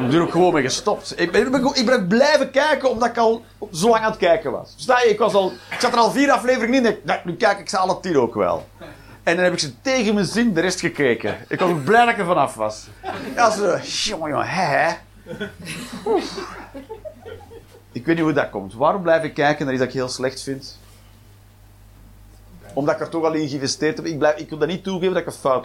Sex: male